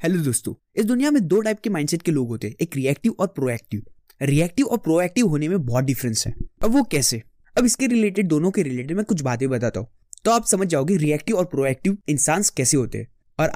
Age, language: 20-39, Hindi